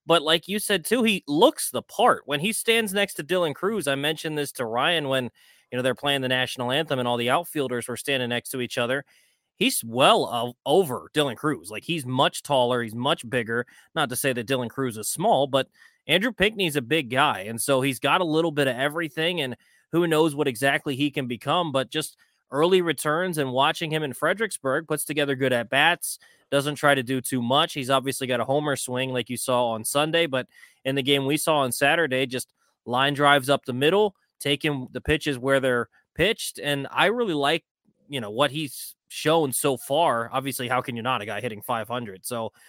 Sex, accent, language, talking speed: male, American, English, 215 wpm